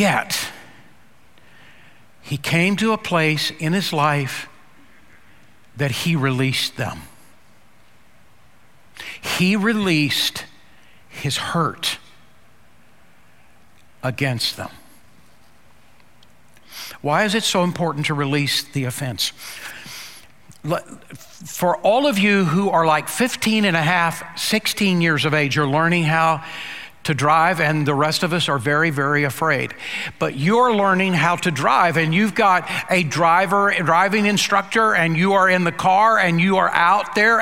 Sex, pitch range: male, 155-200 Hz